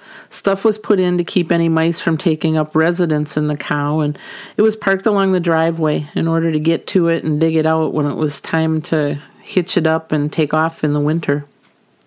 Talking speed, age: 230 wpm, 40-59